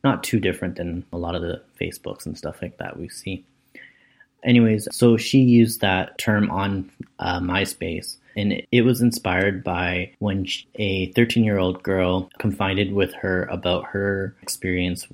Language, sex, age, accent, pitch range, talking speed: English, male, 20-39, American, 90-100 Hz, 160 wpm